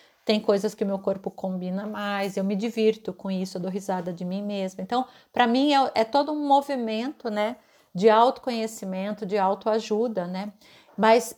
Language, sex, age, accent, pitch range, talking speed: Portuguese, female, 50-69, Brazilian, 195-235 Hz, 175 wpm